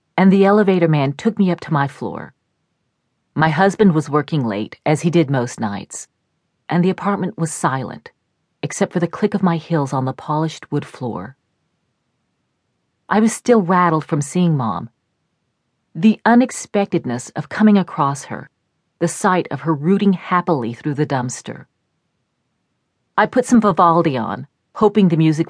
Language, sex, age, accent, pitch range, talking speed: English, female, 40-59, American, 145-195 Hz, 160 wpm